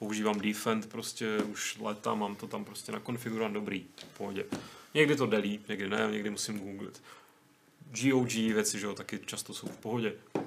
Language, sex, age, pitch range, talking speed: Czech, male, 30-49, 115-140 Hz, 180 wpm